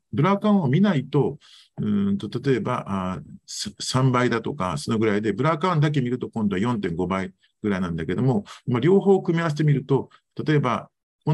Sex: male